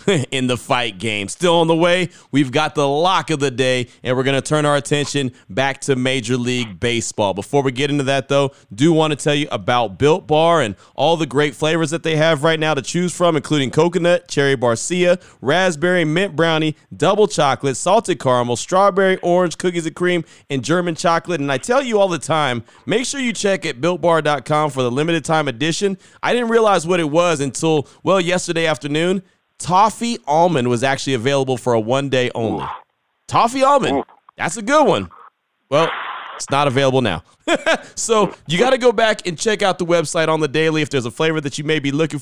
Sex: male